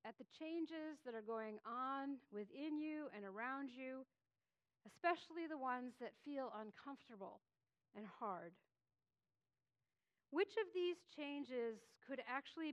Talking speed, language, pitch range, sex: 125 wpm, English, 210-290 Hz, female